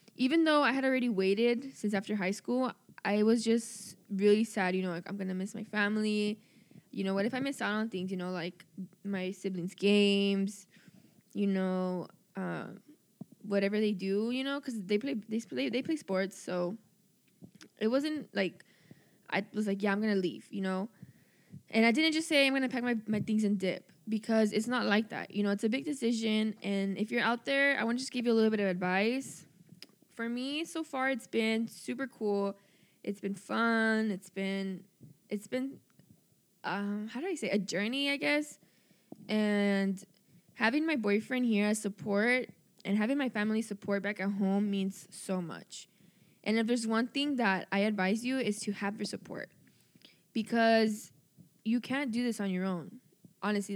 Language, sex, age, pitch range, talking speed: English, female, 10-29, 195-235 Hz, 195 wpm